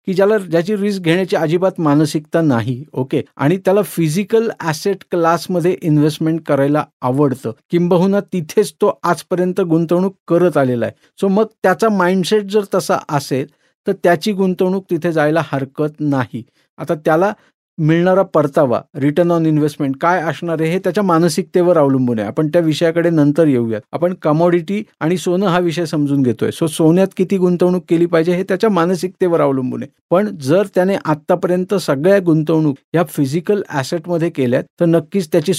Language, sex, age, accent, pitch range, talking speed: Marathi, male, 50-69, native, 145-180 Hz, 155 wpm